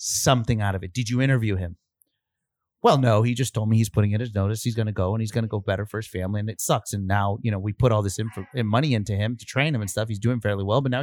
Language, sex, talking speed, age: English, male, 310 wpm, 30-49